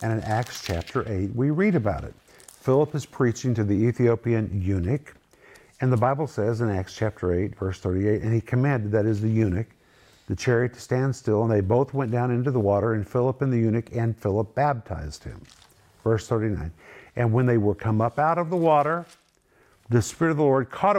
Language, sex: English, male